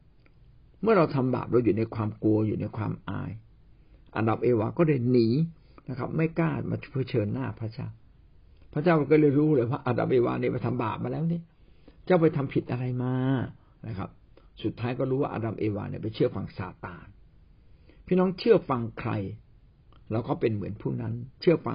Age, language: 60-79, Thai